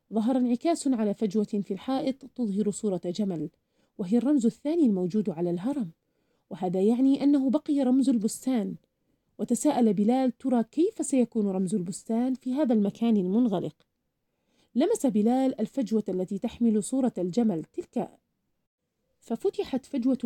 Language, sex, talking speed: Arabic, female, 125 wpm